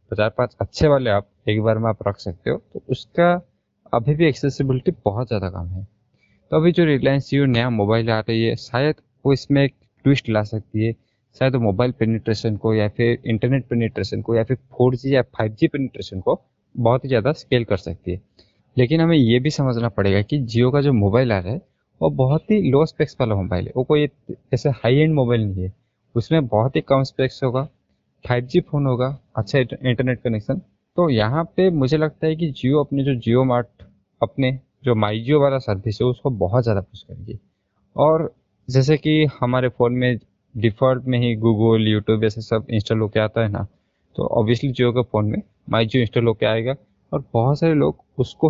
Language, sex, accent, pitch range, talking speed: Hindi, male, native, 110-135 Hz, 200 wpm